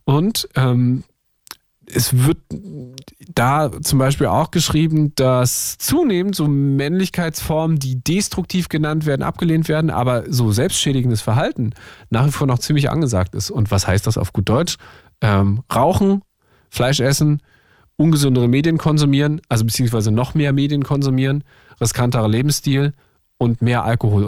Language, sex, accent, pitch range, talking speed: German, male, German, 120-160 Hz, 135 wpm